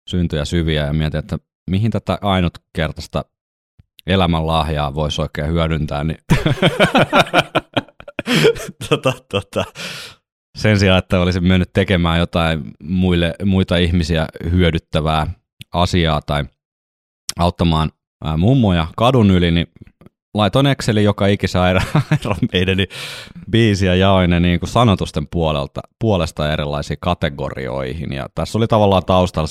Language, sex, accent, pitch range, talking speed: Finnish, male, native, 75-90 Hz, 105 wpm